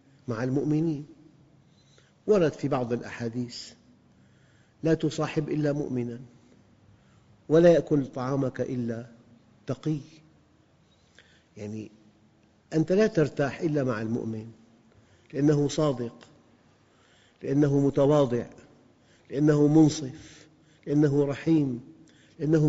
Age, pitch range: 50-69, 125-155 Hz